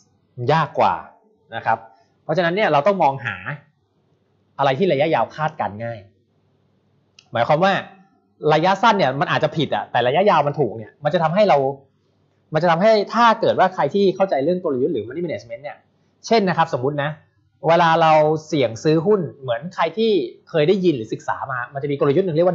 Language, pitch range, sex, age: English, 135-185 Hz, male, 20-39